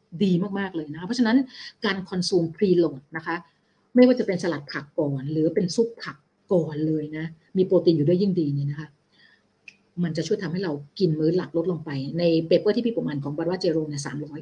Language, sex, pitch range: Thai, female, 160-205 Hz